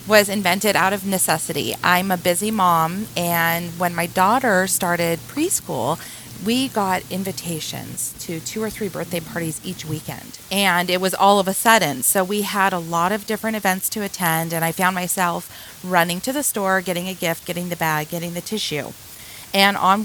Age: 30-49